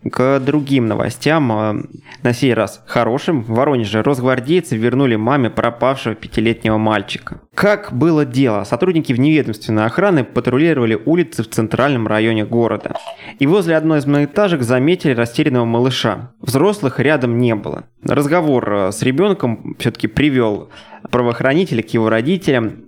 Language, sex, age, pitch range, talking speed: Russian, male, 20-39, 115-145 Hz, 125 wpm